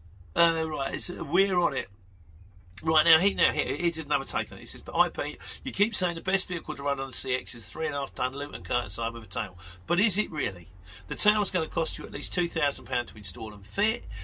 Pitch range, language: 110-175 Hz, English